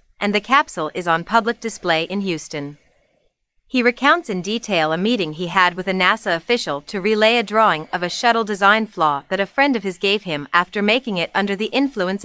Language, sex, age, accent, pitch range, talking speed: English, female, 30-49, American, 180-230 Hz, 210 wpm